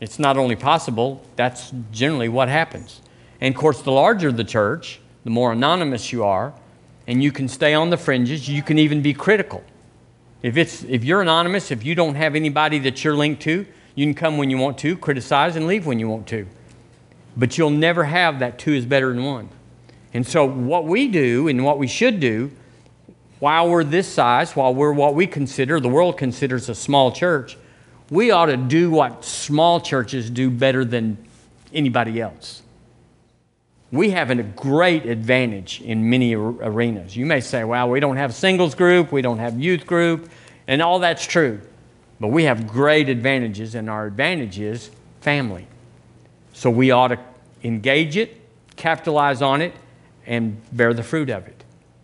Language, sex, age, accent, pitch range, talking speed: English, male, 50-69, American, 120-160 Hz, 185 wpm